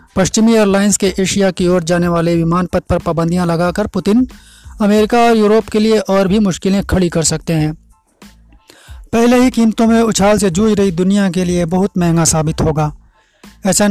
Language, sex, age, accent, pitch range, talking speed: Hindi, male, 30-49, native, 175-205 Hz, 175 wpm